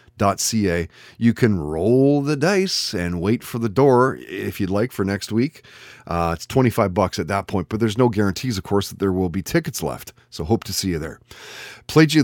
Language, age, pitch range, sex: English, 30-49, 95-125 Hz, male